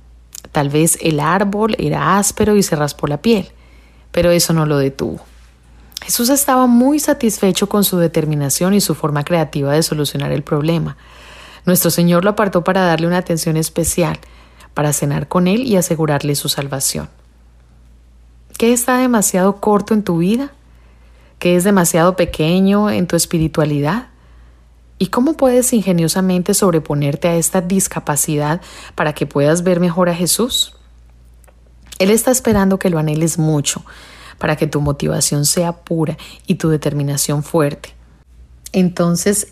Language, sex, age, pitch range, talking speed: Spanish, female, 30-49, 145-190 Hz, 145 wpm